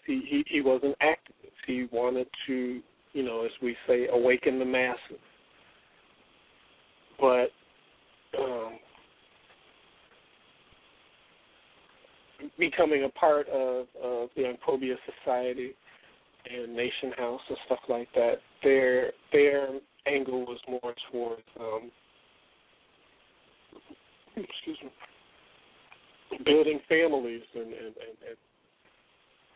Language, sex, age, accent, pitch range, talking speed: English, male, 40-59, American, 120-140 Hz, 100 wpm